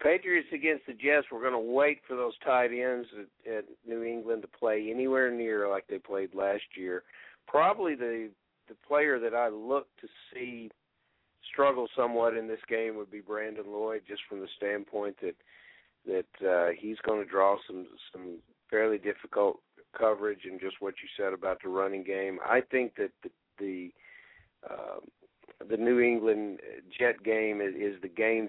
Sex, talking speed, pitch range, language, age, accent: male, 175 wpm, 95-115 Hz, English, 50-69, American